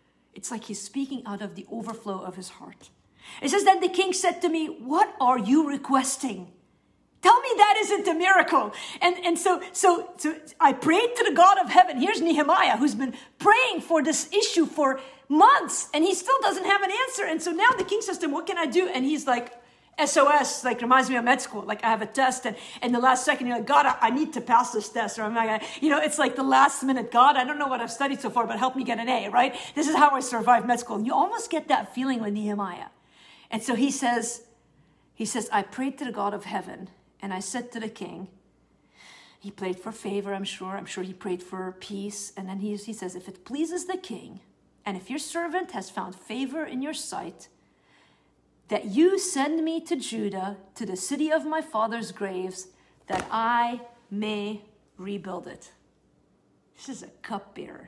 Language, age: English, 50-69